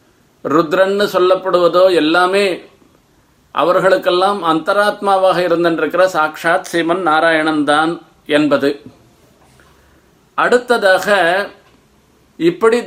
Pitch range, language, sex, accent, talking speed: 160-195 Hz, Tamil, male, native, 55 wpm